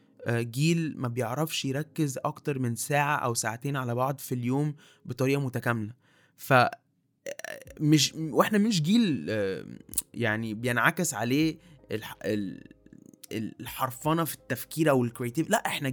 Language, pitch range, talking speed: Arabic, 120-155 Hz, 110 wpm